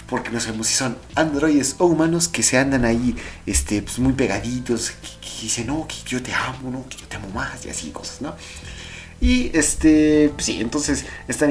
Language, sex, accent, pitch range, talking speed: Spanish, male, Mexican, 110-165 Hz, 210 wpm